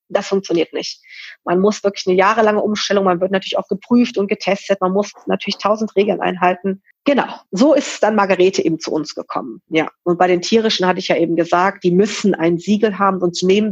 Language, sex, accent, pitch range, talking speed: German, female, German, 175-215 Hz, 210 wpm